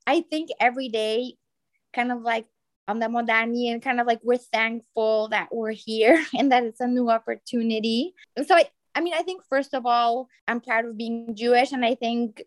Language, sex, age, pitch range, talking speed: English, female, 20-39, 215-250 Hz, 200 wpm